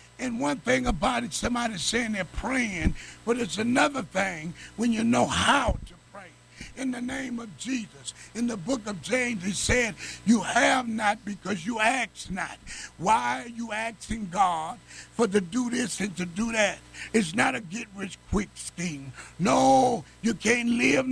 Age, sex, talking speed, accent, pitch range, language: 60-79, male, 170 wpm, American, 200-260 Hz, English